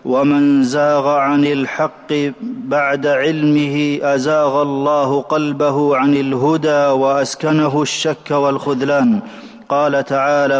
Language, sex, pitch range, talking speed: Arabic, male, 140-155 Hz, 90 wpm